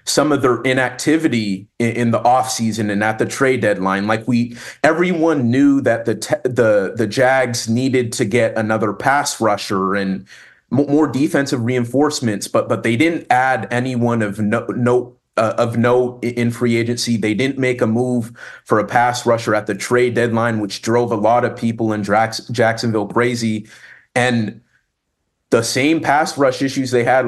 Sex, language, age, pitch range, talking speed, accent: male, English, 30-49, 110-125 Hz, 170 wpm, American